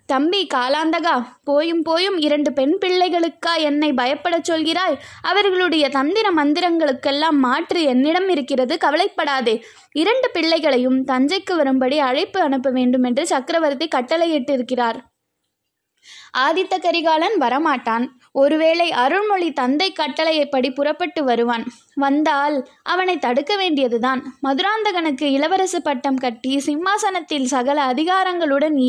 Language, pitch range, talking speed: Tamil, 270-350 Hz, 95 wpm